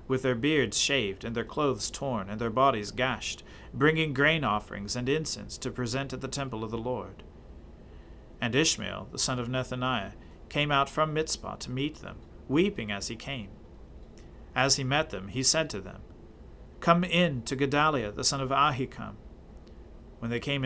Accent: American